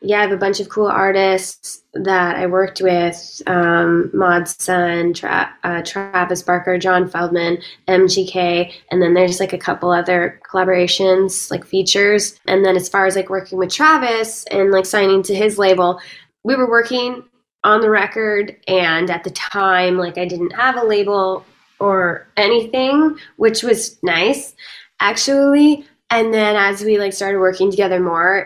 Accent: American